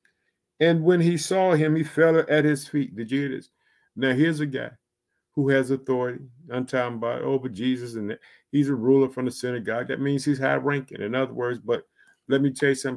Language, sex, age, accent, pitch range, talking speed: English, male, 50-69, American, 130-155 Hz, 215 wpm